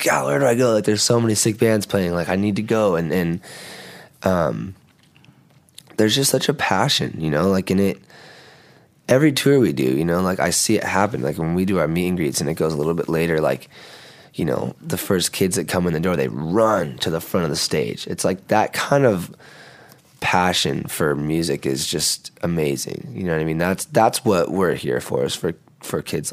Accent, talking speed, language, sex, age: American, 230 wpm, English, male, 20-39